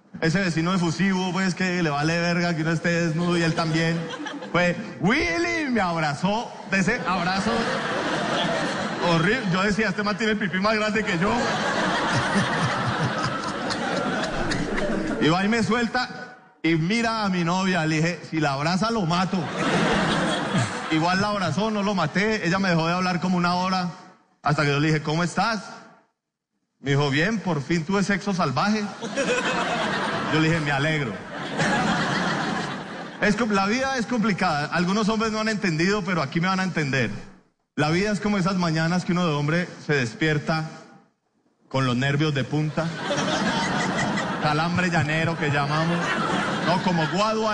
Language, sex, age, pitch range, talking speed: Spanish, male, 30-49, 165-210 Hz, 160 wpm